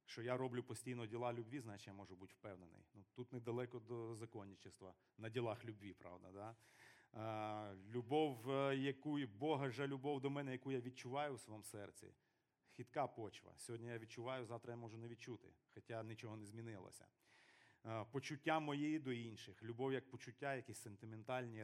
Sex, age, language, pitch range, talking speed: male, 40-59, Ukrainian, 110-135 Hz, 165 wpm